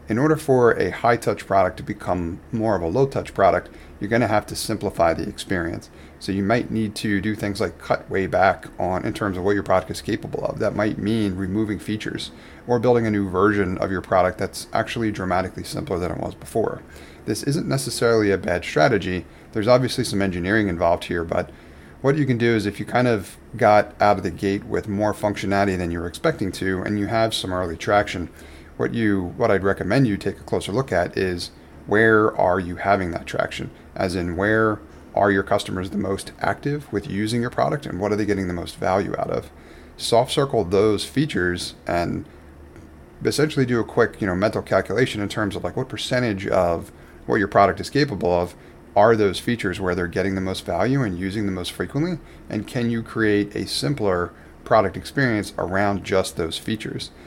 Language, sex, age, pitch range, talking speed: English, male, 30-49, 90-110 Hz, 205 wpm